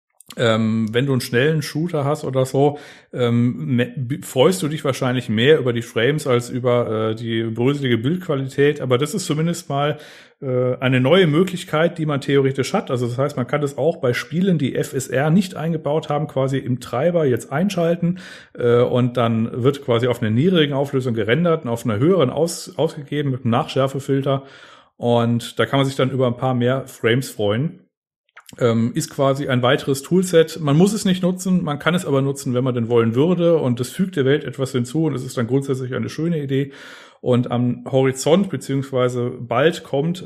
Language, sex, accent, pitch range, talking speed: German, male, German, 120-150 Hz, 190 wpm